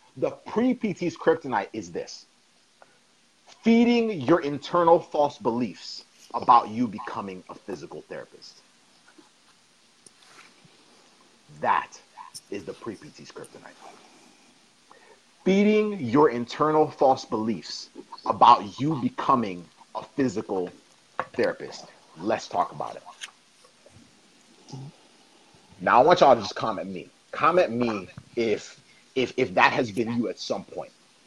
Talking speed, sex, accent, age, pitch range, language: 105 wpm, male, American, 30-49, 140-215 Hz, English